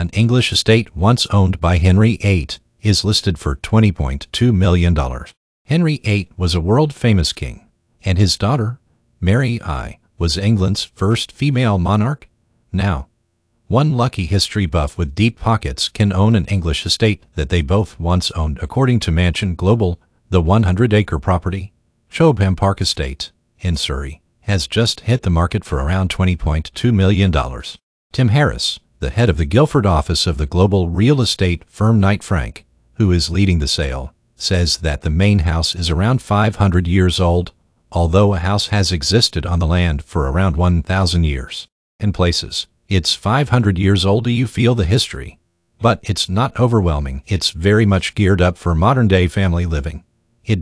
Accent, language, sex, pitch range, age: American, Chinese, male, 85-110 Hz, 50-69